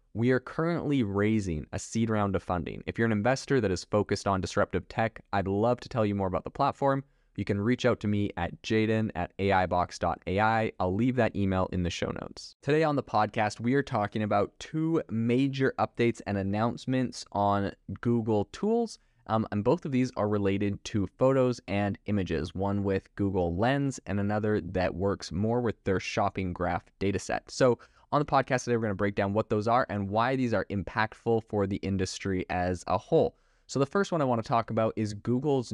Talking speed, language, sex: 205 wpm, English, male